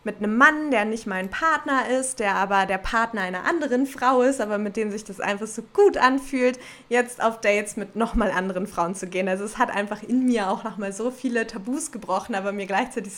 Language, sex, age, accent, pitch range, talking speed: German, female, 20-39, German, 200-240 Hz, 225 wpm